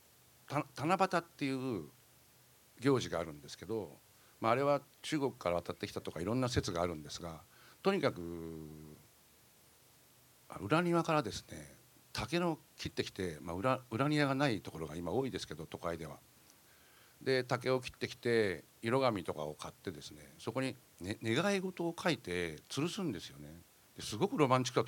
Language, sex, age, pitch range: English, male, 60-79, 95-145 Hz